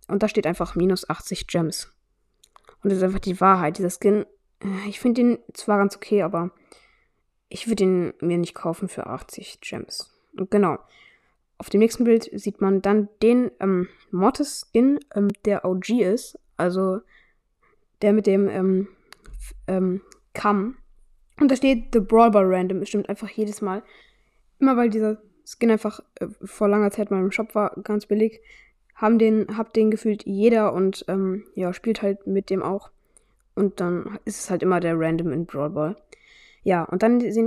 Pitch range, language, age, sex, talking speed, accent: 190-225 Hz, German, 20-39, female, 180 wpm, German